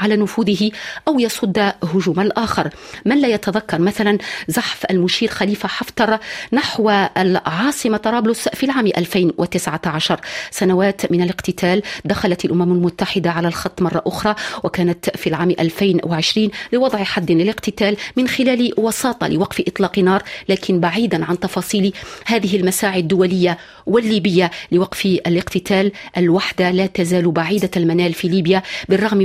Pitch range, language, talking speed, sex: 175-210 Hz, Arabic, 125 wpm, female